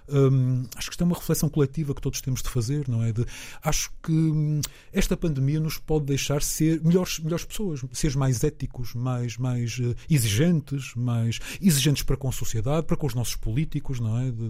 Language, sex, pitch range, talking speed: Portuguese, male, 120-155 Hz, 205 wpm